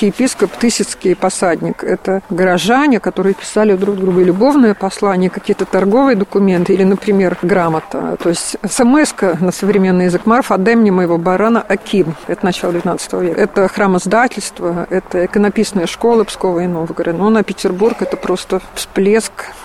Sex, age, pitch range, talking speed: female, 50-69, 185-215 Hz, 140 wpm